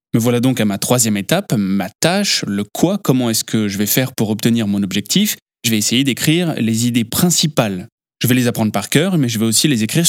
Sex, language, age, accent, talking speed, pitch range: male, French, 20-39, French, 240 wpm, 115-150 Hz